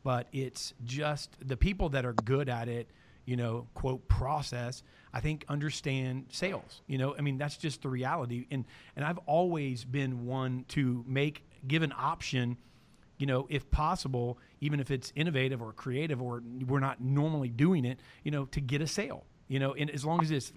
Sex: male